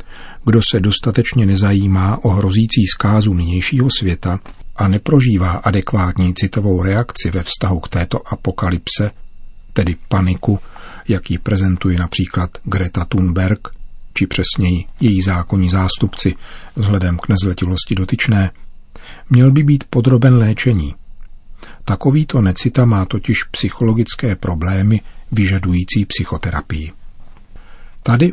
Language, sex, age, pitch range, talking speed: Czech, male, 40-59, 95-115 Hz, 105 wpm